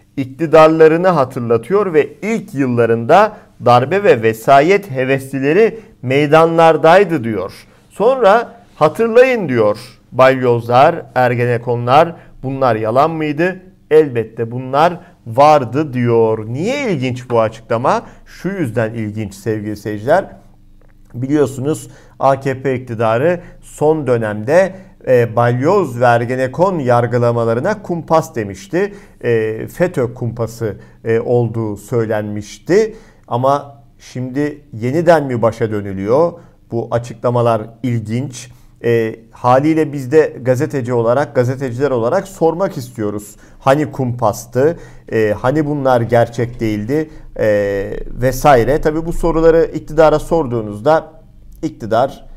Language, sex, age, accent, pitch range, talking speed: Turkish, male, 50-69, native, 115-155 Hz, 95 wpm